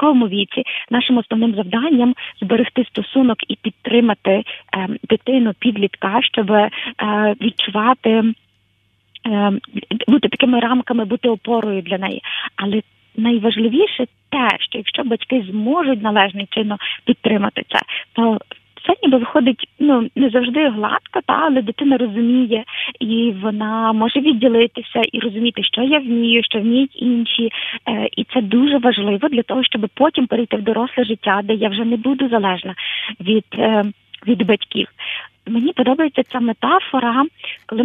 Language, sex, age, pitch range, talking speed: Ukrainian, female, 20-39, 215-250 Hz, 135 wpm